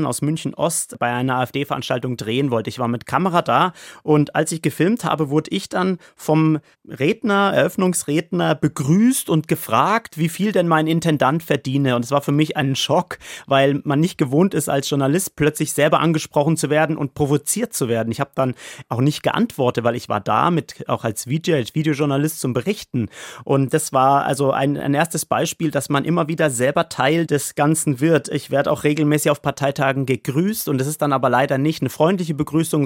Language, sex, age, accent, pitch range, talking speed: German, male, 30-49, German, 135-160 Hz, 190 wpm